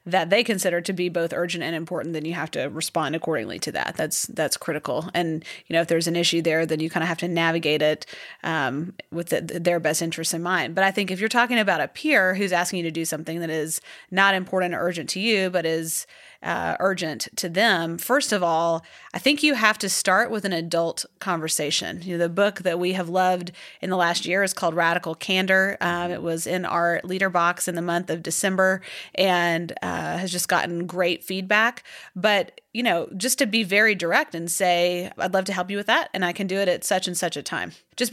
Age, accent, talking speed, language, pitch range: 30-49, American, 235 wpm, English, 170-195 Hz